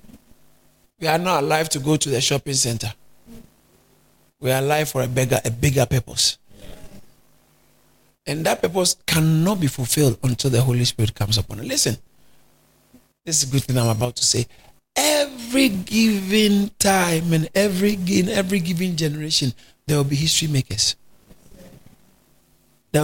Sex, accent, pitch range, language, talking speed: male, Nigerian, 130-205 Hz, English, 150 wpm